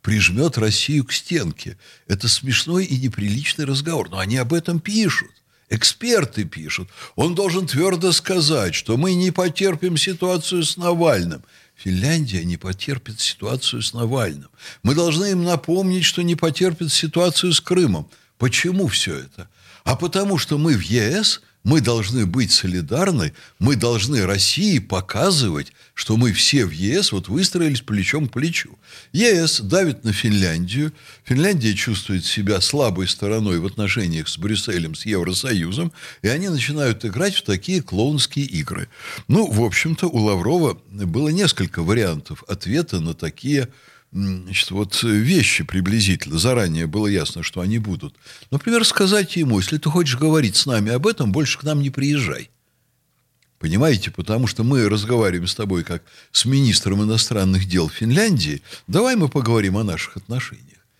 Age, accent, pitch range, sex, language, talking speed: 60-79, native, 100-160 Hz, male, Russian, 145 wpm